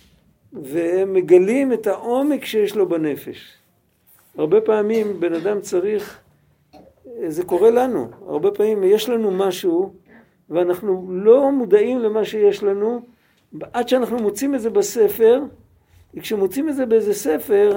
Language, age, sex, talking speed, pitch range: Hebrew, 50-69, male, 120 wpm, 185-260 Hz